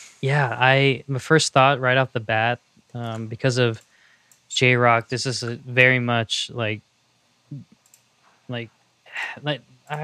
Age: 20-39